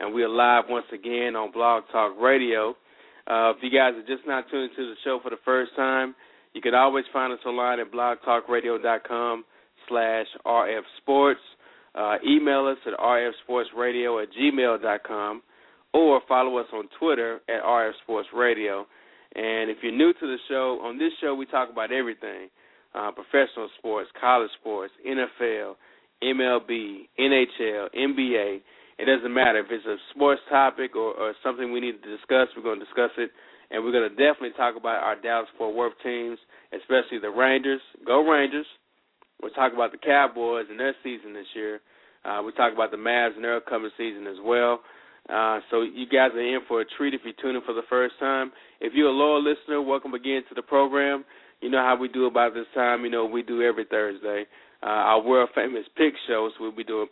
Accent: American